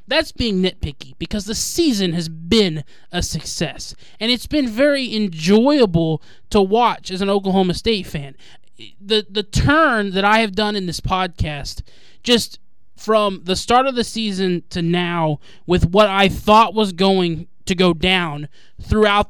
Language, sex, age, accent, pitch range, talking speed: English, male, 20-39, American, 175-215 Hz, 160 wpm